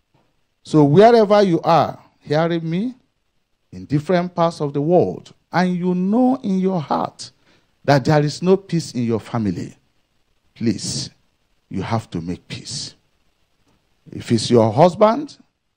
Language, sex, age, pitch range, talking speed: English, male, 50-69, 115-175 Hz, 135 wpm